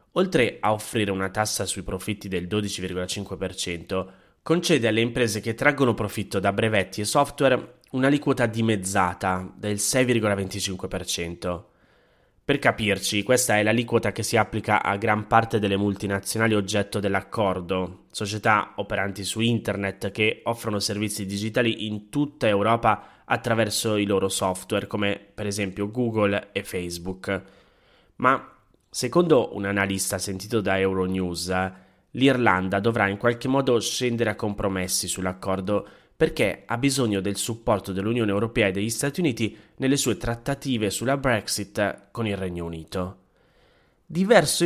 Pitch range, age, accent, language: 100-120 Hz, 20-39, native, Italian